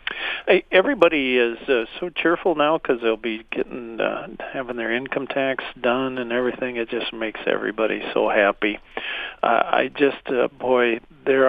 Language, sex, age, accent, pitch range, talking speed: English, male, 50-69, American, 115-135 Hz, 160 wpm